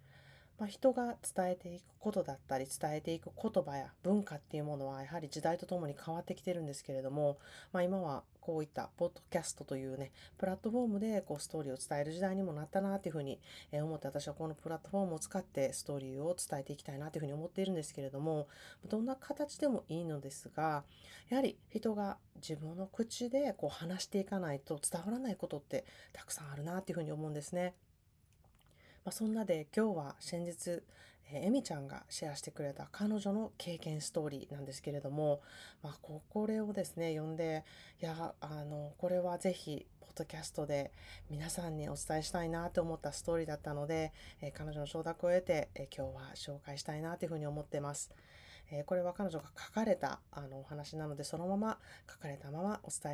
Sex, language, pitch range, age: female, Japanese, 145-185 Hz, 30-49